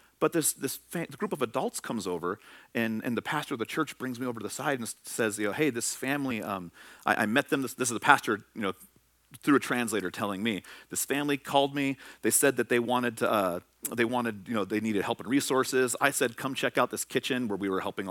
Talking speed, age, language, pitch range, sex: 255 wpm, 40-59, English, 105-140 Hz, male